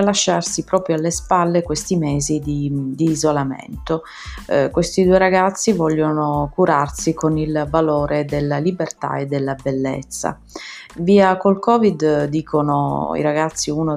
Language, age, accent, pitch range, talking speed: Italian, 30-49, native, 150-180 Hz, 130 wpm